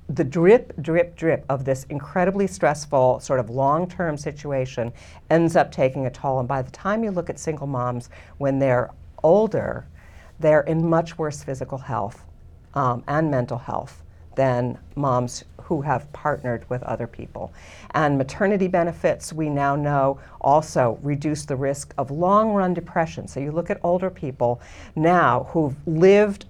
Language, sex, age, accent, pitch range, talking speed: English, female, 50-69, American, 135-165 Hz, 155 wpm